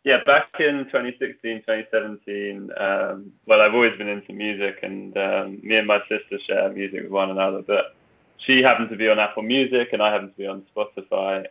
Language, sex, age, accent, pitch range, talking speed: English, male, 20-39, British, 105-125 Hz, 200 wpm